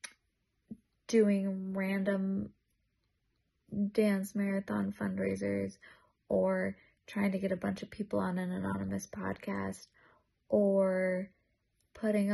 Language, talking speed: English, 90 wpm